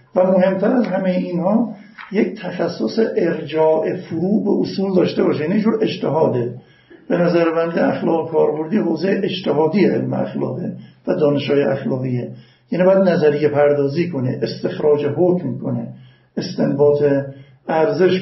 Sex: male